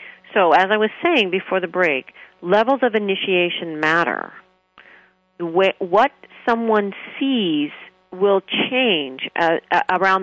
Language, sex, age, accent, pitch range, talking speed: English, female, 40-59, American, 175-220 Hz, 105 wpm